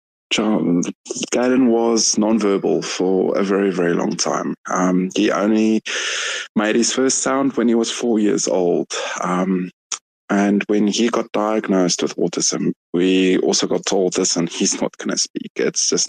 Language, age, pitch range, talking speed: English, 20-39, 95-115 Hz, 160 wpm